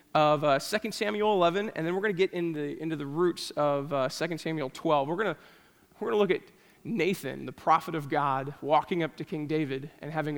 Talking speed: 225 wpm